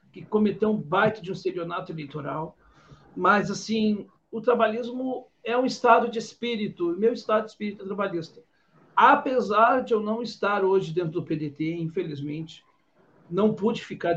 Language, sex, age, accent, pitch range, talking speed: Portuguese, male, 60-79, Brazilian, 170-225 Hz, 155 wpm